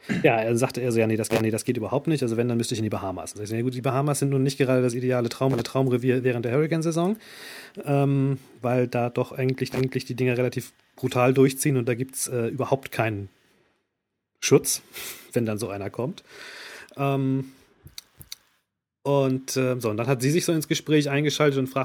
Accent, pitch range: German, 115-135 Hz